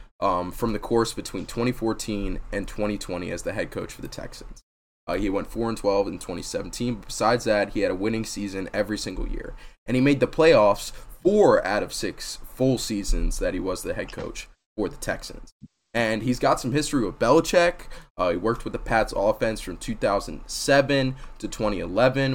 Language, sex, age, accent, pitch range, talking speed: English, male, 20-39, American, 105-155 Hz, 190 wpm